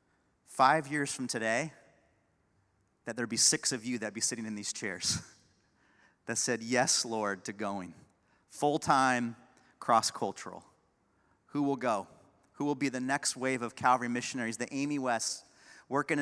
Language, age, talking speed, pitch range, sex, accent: English, 30-49, 150 wpm, 125-175 Hz, male, American